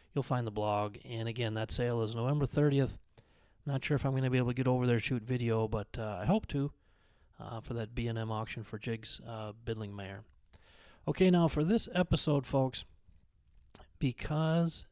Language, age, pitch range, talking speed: English, 30-49, 110-135 Hz, 190 wpm